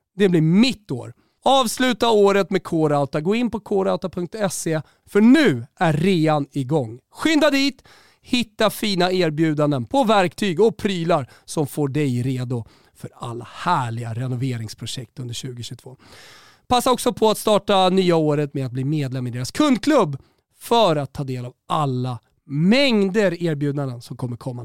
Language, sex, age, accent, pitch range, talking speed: Swedish, male, 40-59, native, 130-195 Hz, 150 wpm